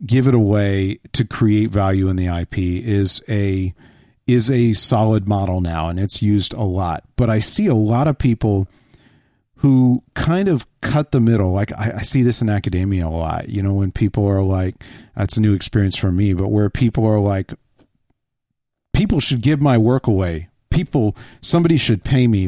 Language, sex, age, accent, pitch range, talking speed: English, male, 50-69, American, 105-135 Hz, 190 wpm